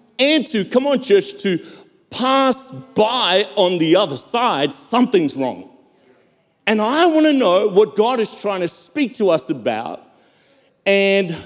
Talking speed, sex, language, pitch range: 150 wpm, male, English, 150-235 Hz